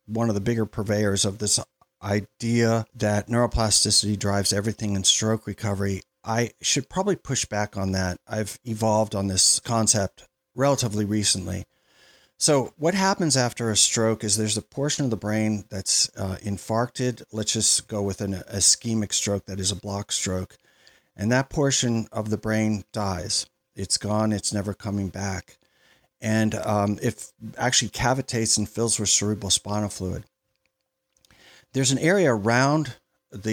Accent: American